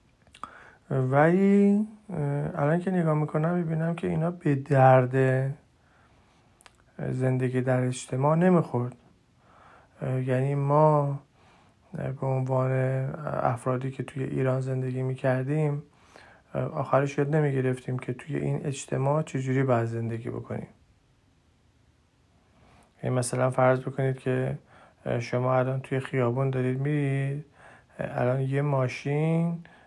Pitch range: 120-140 Hz